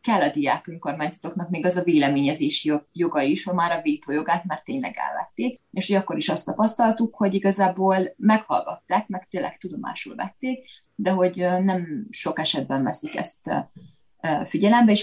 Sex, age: female, 20-39